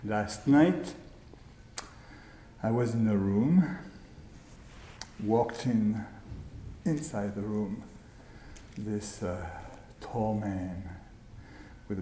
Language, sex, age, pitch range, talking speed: English, male, 60-79, 100-115 Hz, 85 wpm